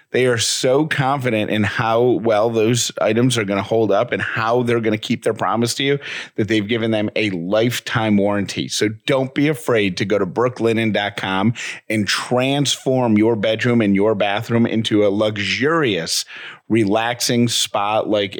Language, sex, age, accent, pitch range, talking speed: English, male, 30-49, American, 105-125 Hz, 165 wpm